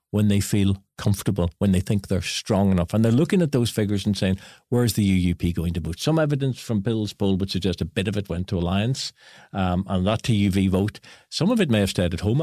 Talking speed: 245 wpm